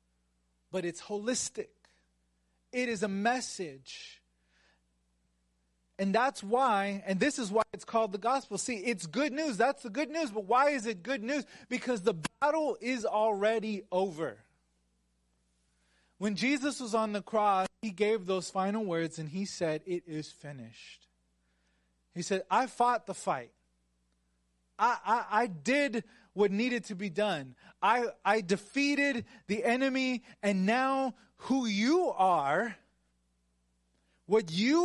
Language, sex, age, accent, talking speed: English, male, 30-49, American, 140 wpm